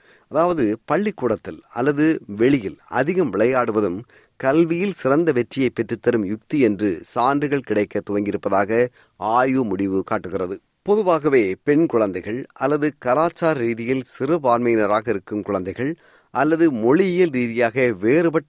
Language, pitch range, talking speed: Tamil, 105-150 Hz, 95 wpm